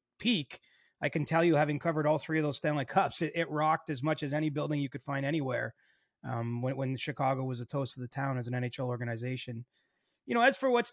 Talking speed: 245 wpm